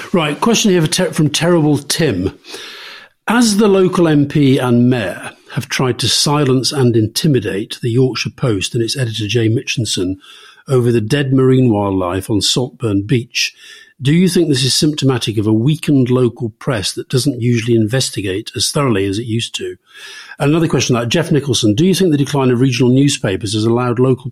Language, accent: English, British